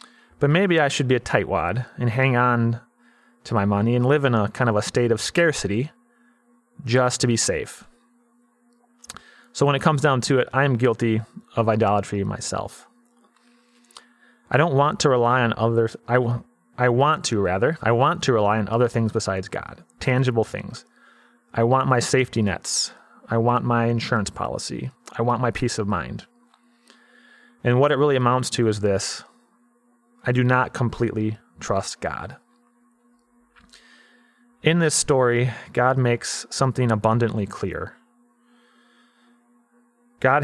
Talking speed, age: 150 wpm, 30-49